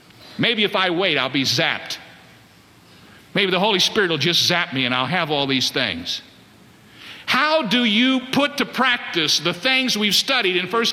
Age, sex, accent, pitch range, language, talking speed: 50-69, male, American, 120-170 Hz, English, 180 wpm